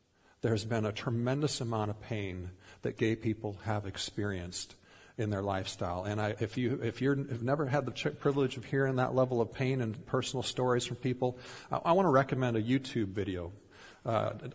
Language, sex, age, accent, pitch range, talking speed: English, male, 50-69, American, 105-130 Hz, 195 wpm